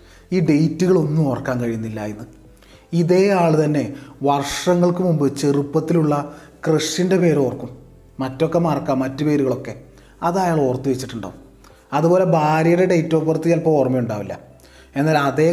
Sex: male